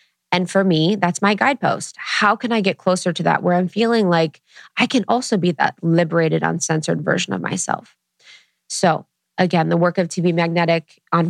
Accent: American